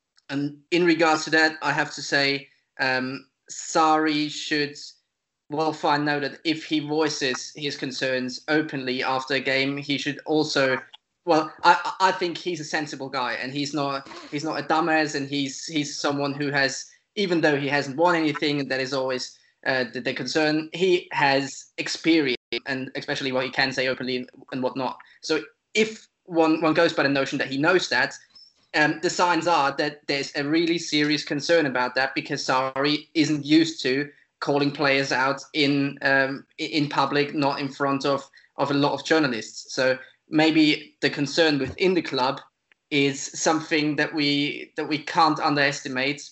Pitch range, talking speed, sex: 135-155 Hz, 175 wpm, male